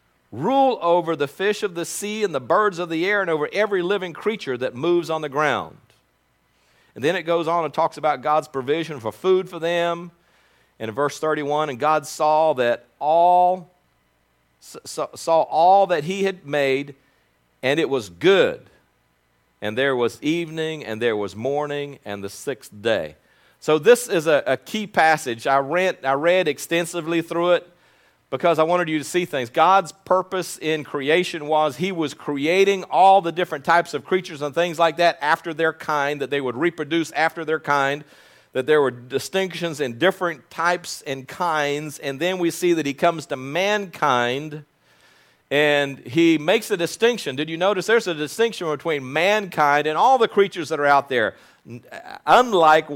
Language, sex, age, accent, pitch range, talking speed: English, male, 40-59, American, 140-175 Hz, 180 wpm